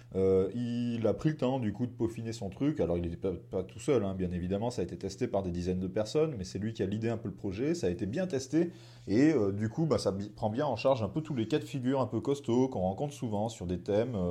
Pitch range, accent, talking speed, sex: 95-125 Hz, French, 305 wpm, male